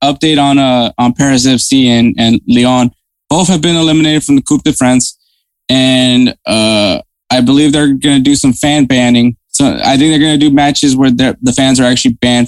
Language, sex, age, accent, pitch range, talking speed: English, male, 20-39, American, 125-150 Hz, 195 wpm